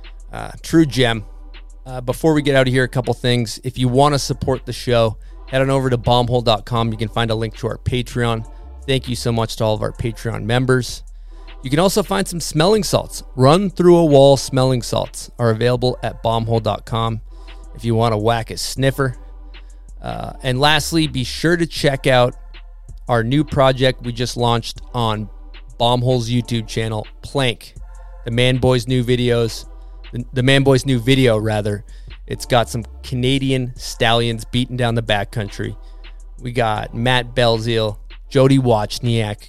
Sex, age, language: male, 30-49, English